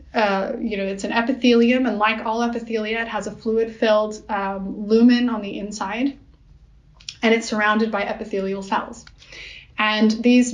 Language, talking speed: English, 160 wpm